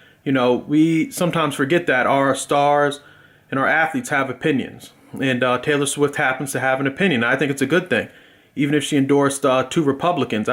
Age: 30-49